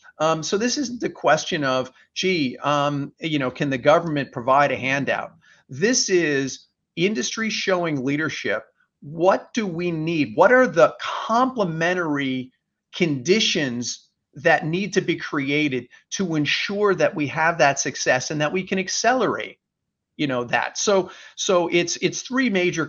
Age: 40-59